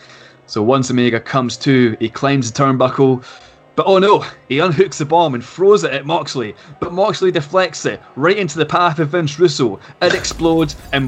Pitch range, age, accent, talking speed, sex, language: 125-155 Hz, 20-39, British, 190 wpm, male, English